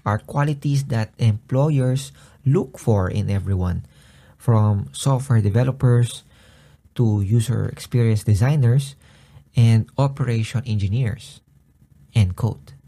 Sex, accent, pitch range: male, native, 100-135 Hz